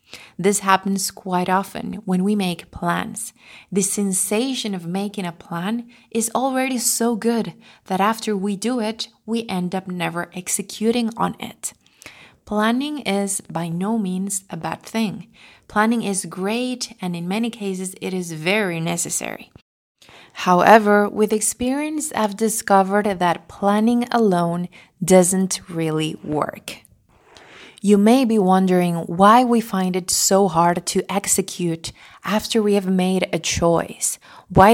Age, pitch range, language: 20-39, 185-225 Hz, English